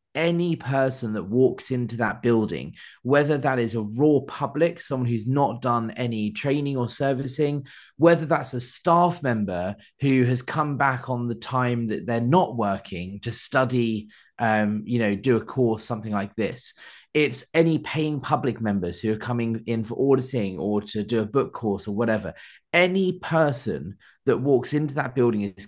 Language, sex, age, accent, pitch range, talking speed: English, male, 30-49, British, 110-140 Hz, 175 wpm